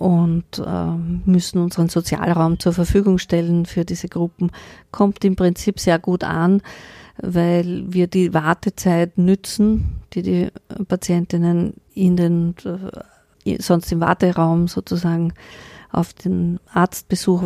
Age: 50-69